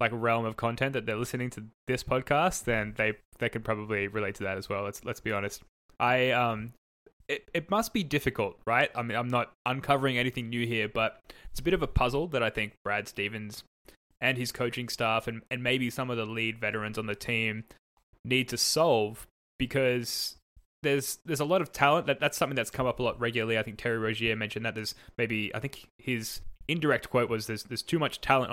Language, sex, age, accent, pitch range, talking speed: English, male, 10-29, Australian, 110-130 Hz, 220 wpm